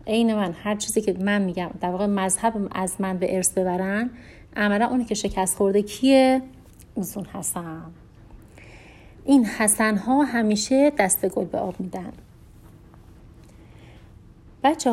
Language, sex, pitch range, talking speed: Persian, female, 200-245 Hz, 135 wpm